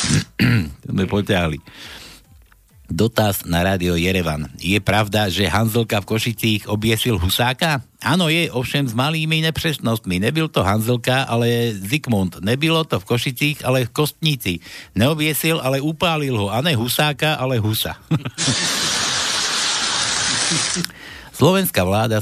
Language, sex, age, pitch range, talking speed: Slovak, male, 60-79, 100-145 Hz, 115 wpm